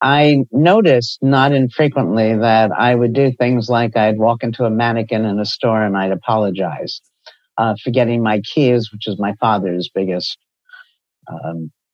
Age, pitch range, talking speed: 50-69, 110-140 Hz, 160 wpm